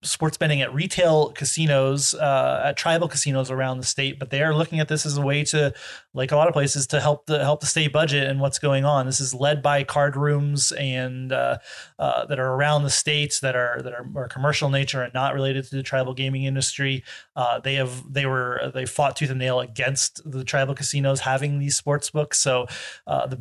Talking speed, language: 225 wpm, English